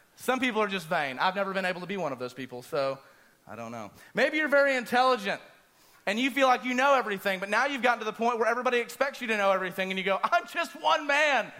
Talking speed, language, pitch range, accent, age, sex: 265 wpm, English, 190-240 Hz, American, 30-49, male